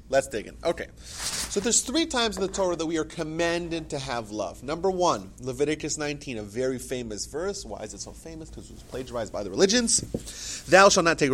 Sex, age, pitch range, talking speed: male, 30-49, 105-140 Hz, 220 wpm